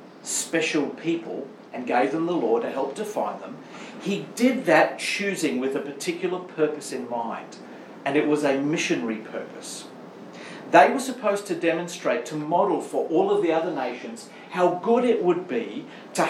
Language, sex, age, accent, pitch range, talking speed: English, male, 50-69, Australian, 135-175 Hz, 170 wpm